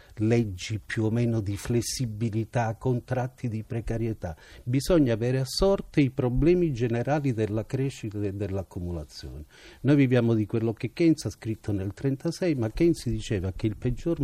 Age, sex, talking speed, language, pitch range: 50-69, male, 150 wpm, Italian, 100-135 Hz